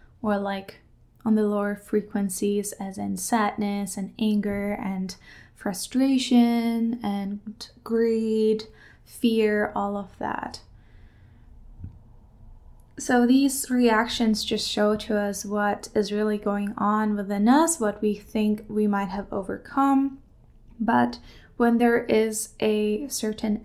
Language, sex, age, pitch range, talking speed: English, female, 10-29, 205-235 Hz, 115 wpm